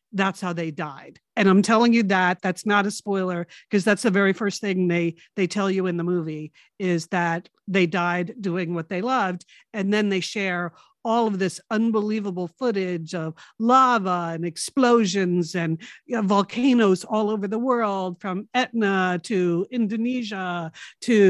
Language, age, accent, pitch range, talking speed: English, 50-69, American, 185-230 Hz, 170 wpm